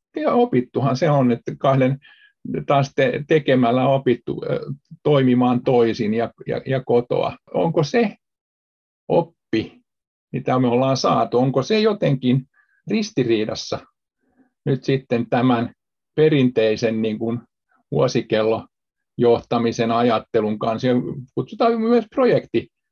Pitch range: 125-160 Hz